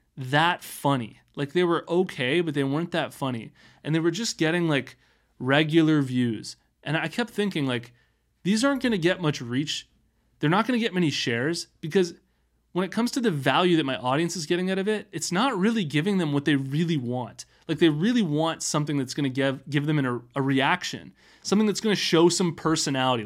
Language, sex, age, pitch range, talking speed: English, male, 20-39, 130-175 Hz, 215 wpm